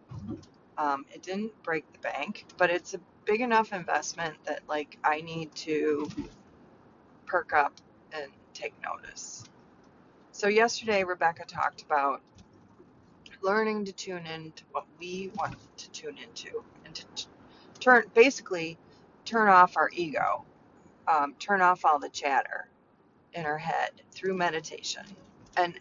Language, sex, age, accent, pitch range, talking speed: English, female, 30-49, American, 165-215 Hz, 135 wpm